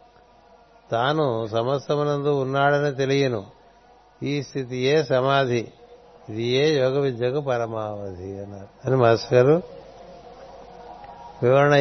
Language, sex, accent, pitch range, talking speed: Telugu, male, native, 125-145 Hz, 90 wpm